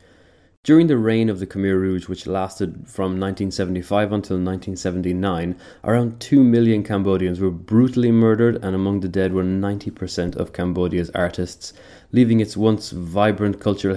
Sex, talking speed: male, 145 wpm